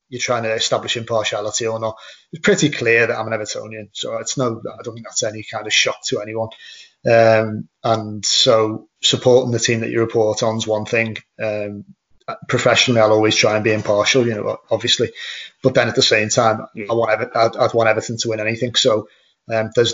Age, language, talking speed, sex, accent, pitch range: 30-49, English, 205 wpm, male, British, 110-125 Hz